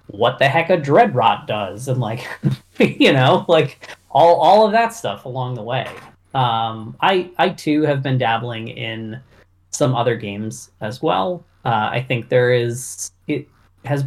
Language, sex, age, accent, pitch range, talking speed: English, male, 20-39, American, 105-140 Hz, 170 wpm